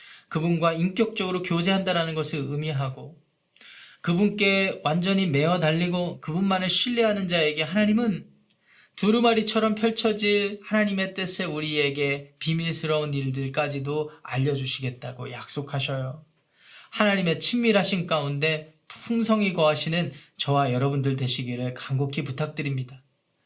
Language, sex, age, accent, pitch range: Korean, male, 20-39, native, 150-200 Hz